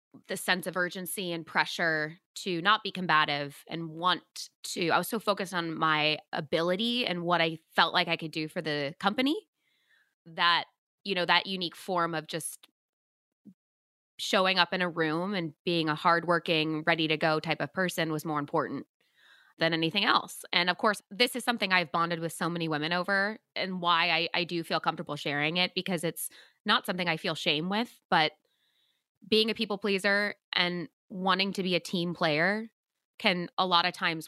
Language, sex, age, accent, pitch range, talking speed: English, female, 20-39, American, 165-195 Hz, 185 wpm